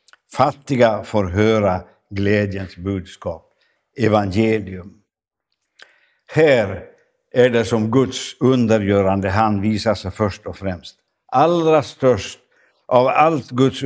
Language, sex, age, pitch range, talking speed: Swedish, male, 60-79, 100-130 Hz, 95 wpm